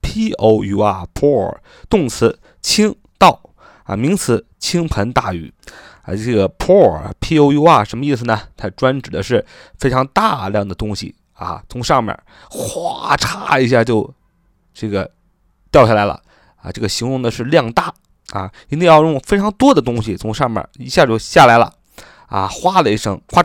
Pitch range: 110-155 Hz